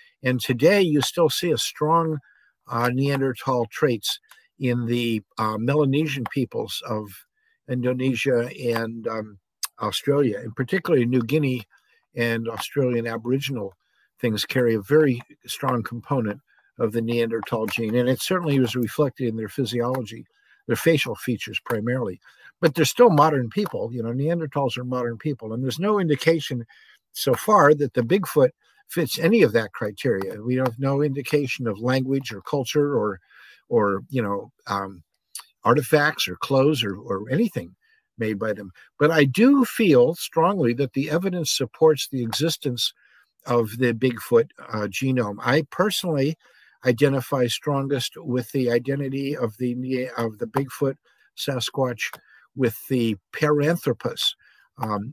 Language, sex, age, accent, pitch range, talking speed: English, male, 50-69, American, 120-150 Hz, 140 wpm